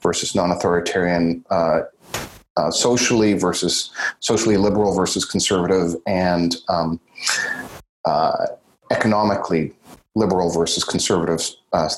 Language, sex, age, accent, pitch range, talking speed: English, male, 40-59, American, 90-110 Hz, 90 wpm